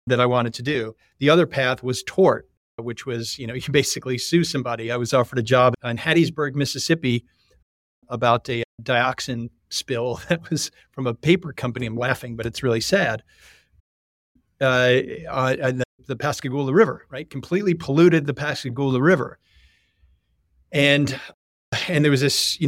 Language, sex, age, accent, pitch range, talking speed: English, male, 40-59, American, 120-140 Hz, 155 wpm